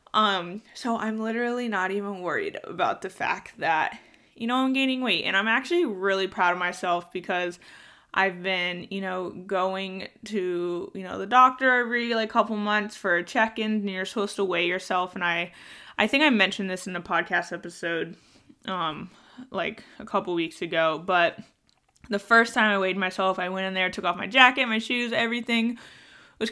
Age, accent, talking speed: 20-39, American, 190 wpm